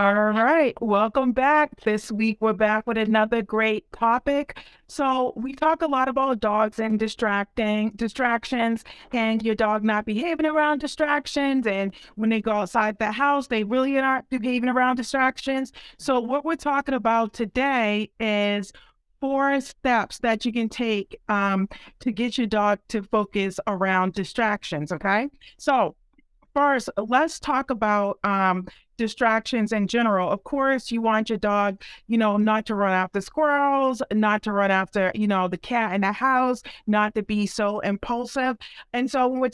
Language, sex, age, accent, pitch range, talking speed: English, female, 40-59, American, 205-260 Hz, 160 wpm